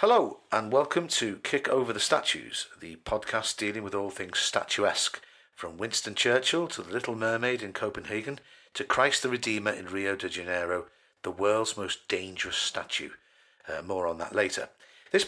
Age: 50-69